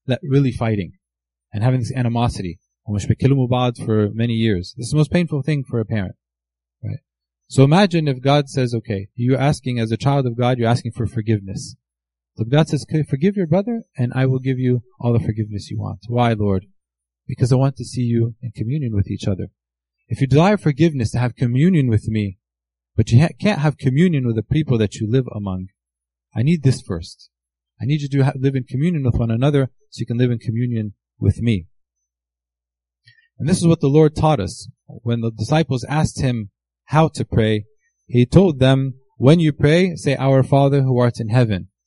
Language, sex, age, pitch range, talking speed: English, male, 30-49, 105-140 Hz, 200 wpm